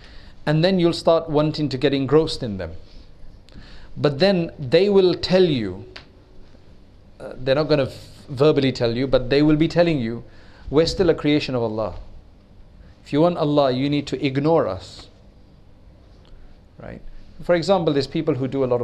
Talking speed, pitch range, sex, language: 170 wpm, 100-160 Hz, male, English